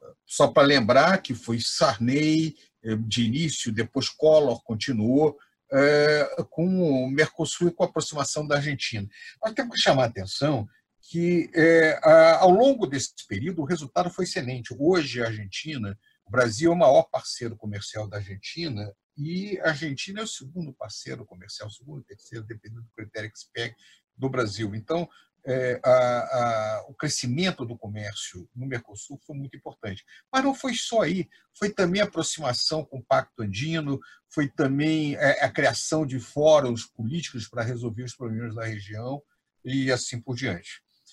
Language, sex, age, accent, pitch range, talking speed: Portuguese, male, 50-69, Brazilian, 110-160 Hz, 160 wpm